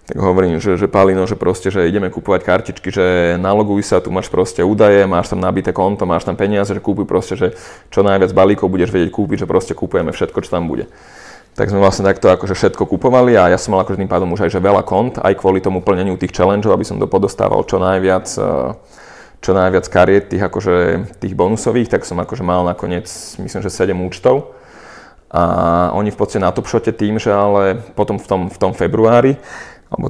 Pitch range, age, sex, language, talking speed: 90-105 Hz, 30-49, male, Slovak, 200 wpm